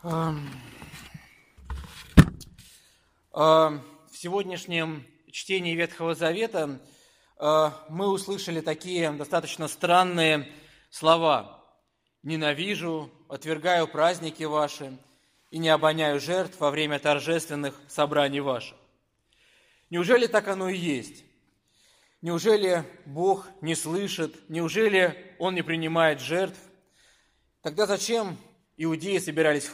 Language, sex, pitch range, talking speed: Russian, male, 155-190 Hz, 85 wpm